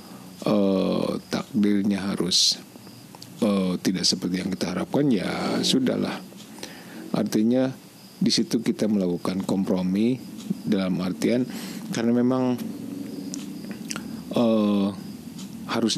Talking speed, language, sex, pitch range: 85 wpm, Malay, male, 95-120 Hz